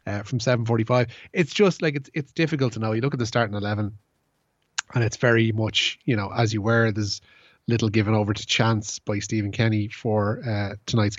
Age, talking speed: 30-49, 205 wpm